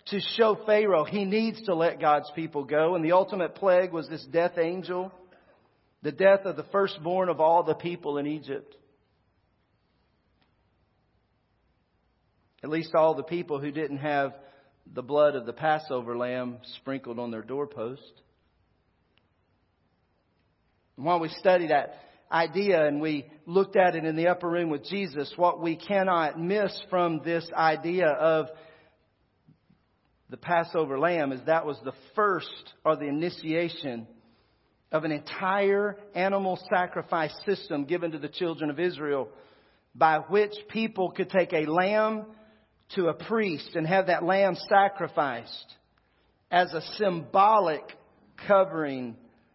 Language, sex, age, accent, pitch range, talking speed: English, male, 40-59, American, 135-185 Hz, 140 wpm